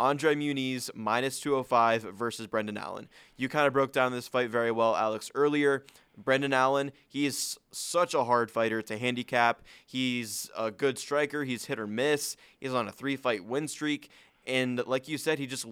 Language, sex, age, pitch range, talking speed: English, male, 20-39, 115-140 Hz, 185 wpm